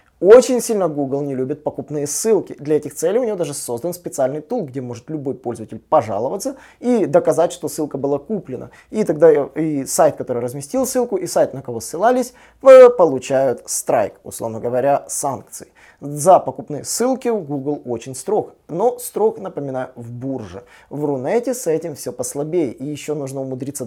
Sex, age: male, 20-39